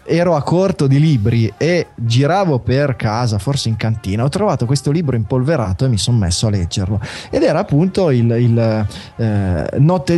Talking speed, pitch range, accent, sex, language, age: 175 wpm, 120-160 Hz, native, male, Italian, 20-39